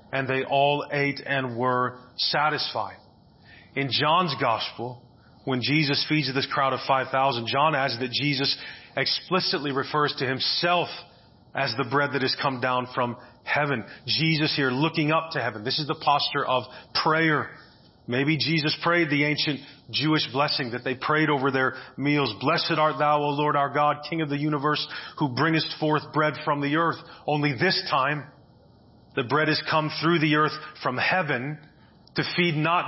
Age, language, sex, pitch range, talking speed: 30-49, English, male, 135-165 Hz, 170 wpm